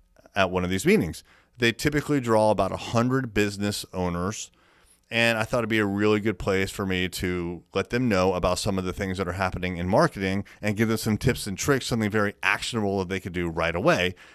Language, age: English, 30-49